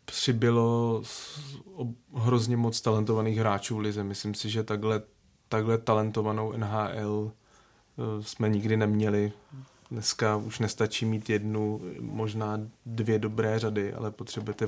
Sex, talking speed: male, 115 wpm